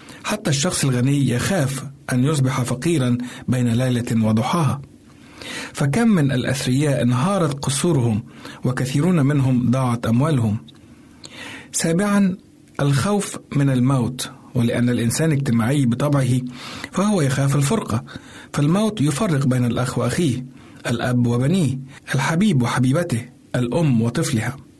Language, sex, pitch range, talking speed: Arabic, male, 120-155 Hz, 100 wpm